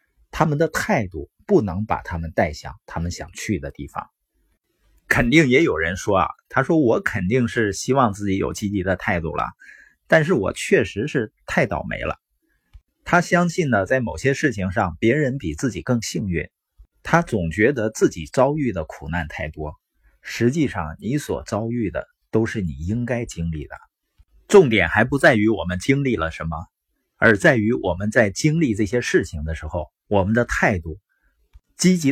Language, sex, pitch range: Chinese, male, 90-135 Hz